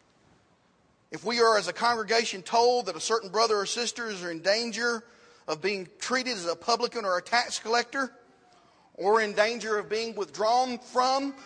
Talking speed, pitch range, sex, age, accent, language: 175 wpm, 180-240 Hz, male, 40-59, American, English